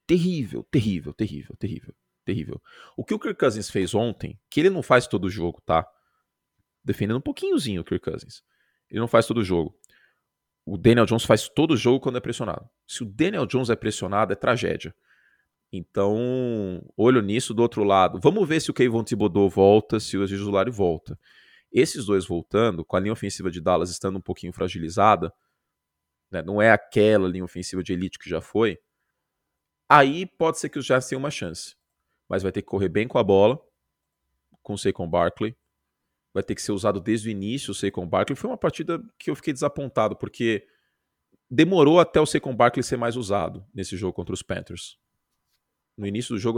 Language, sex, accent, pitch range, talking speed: Portuguese, male, Brazilian, 95-125 Hz, 195 wpm